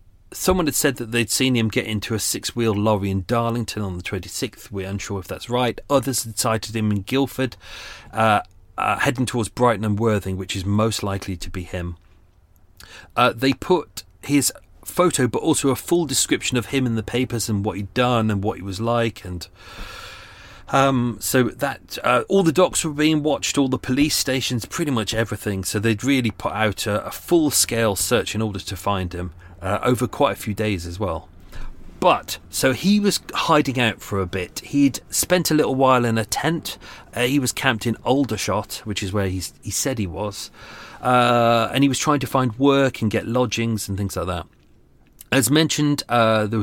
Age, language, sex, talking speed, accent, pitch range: 30-49, English, male, 200 wpm, British, 100-135 Hz